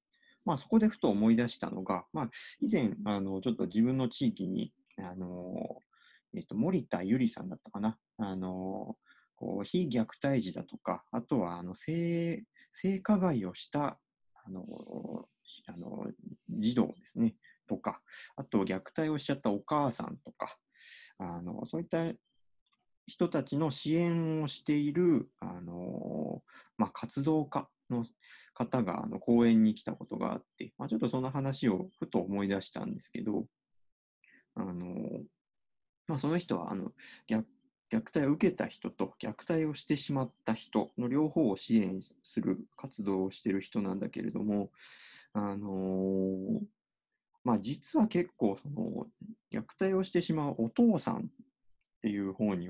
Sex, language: male, Japanese